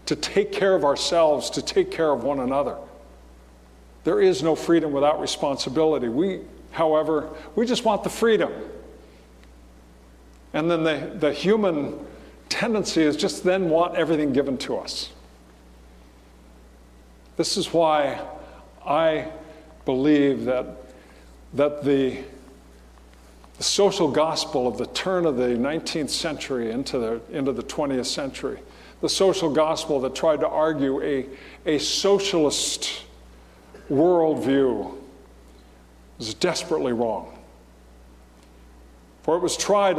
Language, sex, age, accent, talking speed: English, male, 50-69, American, 120 wpm